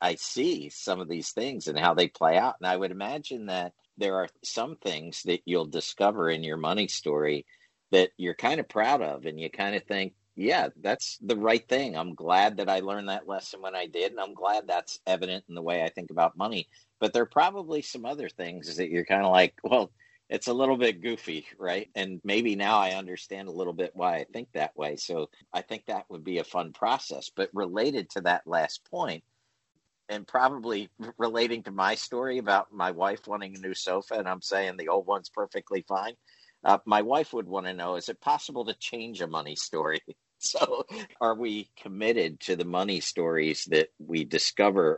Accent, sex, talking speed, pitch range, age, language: American, male, 210 wpm, 90-115 Hz, 50-69, English